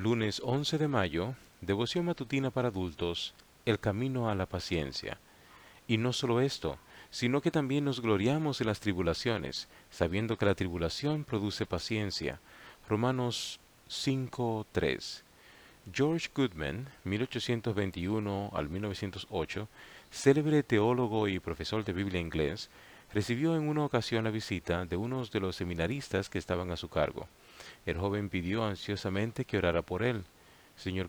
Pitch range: 90-120 Hz